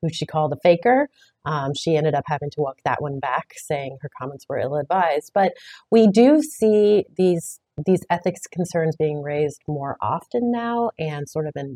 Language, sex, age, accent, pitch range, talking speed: English, female, 30-49, American, 150-185 Hz, 190 wpm